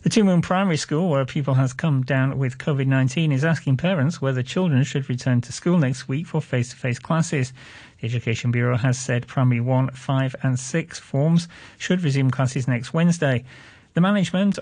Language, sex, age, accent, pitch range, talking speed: English, male, 40-59, British, 125-155 Hz, 195 wpm